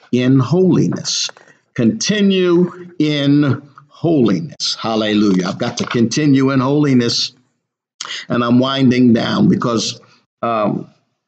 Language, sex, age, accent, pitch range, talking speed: English, male, 50-69, American, 115-140 Hz, 95 wpm